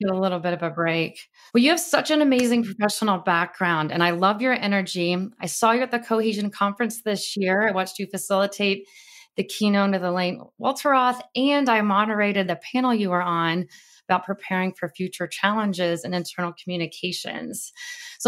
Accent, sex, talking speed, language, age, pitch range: American, female, 175 wpm, English, 30-49, 175-225 Hz